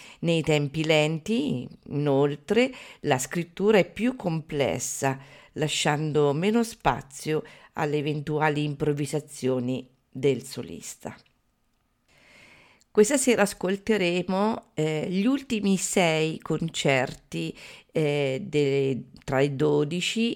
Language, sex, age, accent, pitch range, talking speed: Italian, female, 50-69, native, 140-165 Hz, 85 wpm